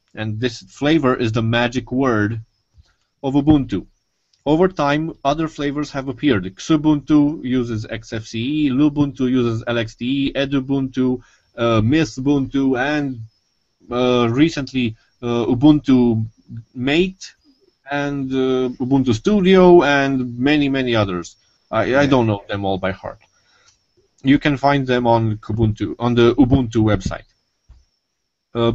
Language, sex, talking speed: English, male, 120 wpm